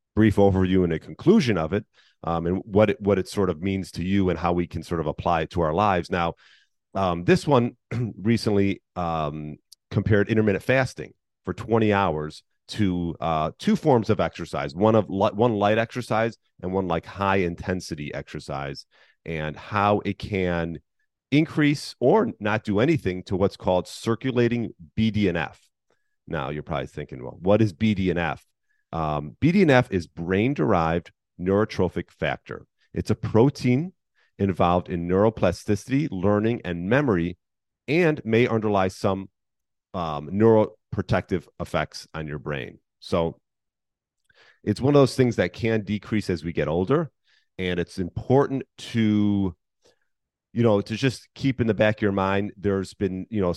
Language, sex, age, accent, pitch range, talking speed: English, male, 40-59, American, 85-110 Hz, 155 wpm